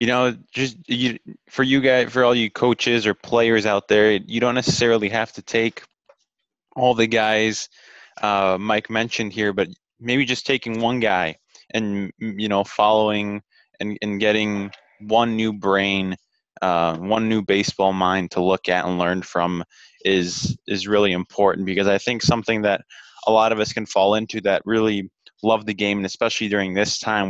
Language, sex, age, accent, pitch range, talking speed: English, male, 20-39, American, 95-110 Hz, 180 wpm